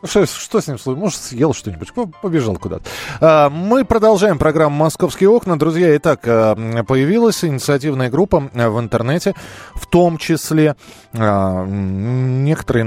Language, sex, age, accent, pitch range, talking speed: Russian, male, 20-39, native, 110-155 Hz, 125 wpm